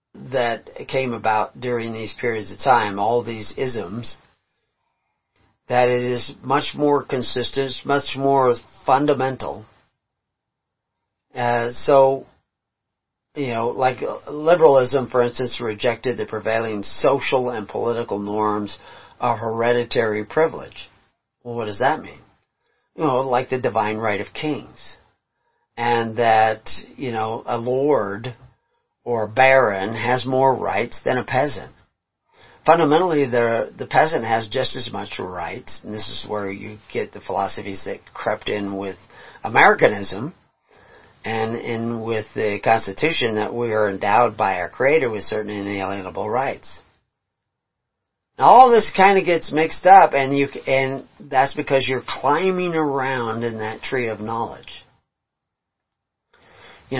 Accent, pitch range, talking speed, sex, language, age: American, 110-135 Hz, 130 wpm, male, English, 40-59